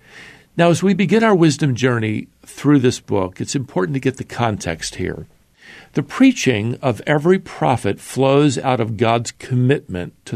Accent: American